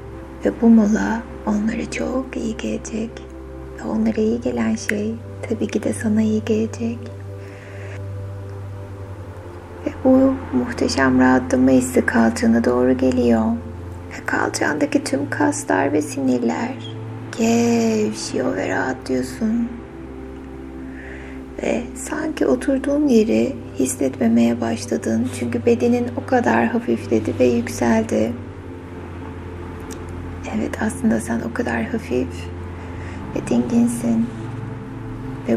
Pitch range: 90-135 Hz